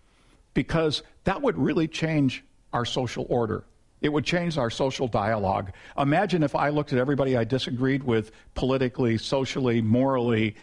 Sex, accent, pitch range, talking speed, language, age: male, American, 115-140 Hz, 145 wpm, English, 50-69